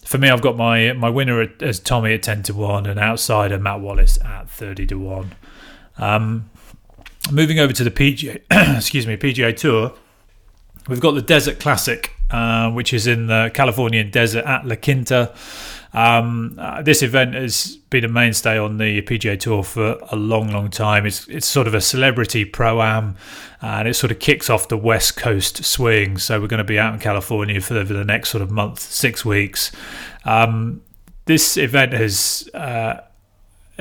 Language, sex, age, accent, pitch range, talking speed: English, male, 30-49, British, 105-125 Hz, 180 wpm